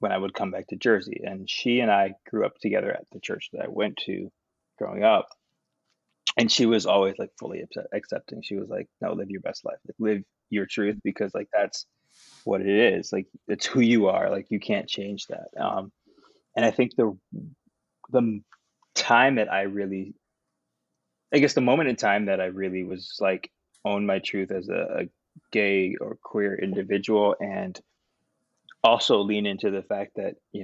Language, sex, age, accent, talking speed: English, male, 20-39, American, 190 wpm